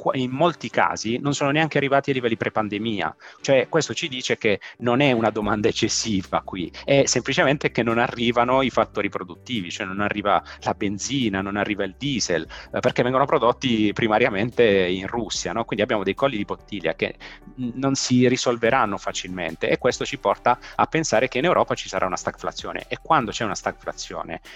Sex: male